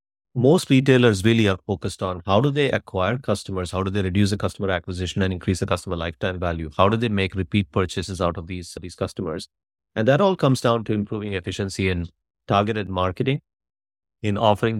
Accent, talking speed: Indian, 195 wpm